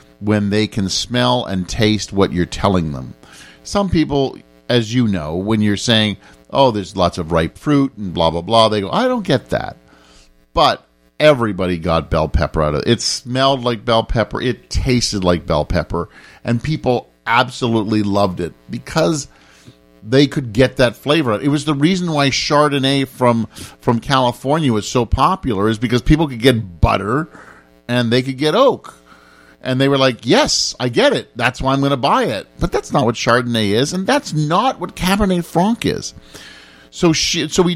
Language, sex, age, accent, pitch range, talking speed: English, male, 50-69, American, 95-135 Hz, 190 wpm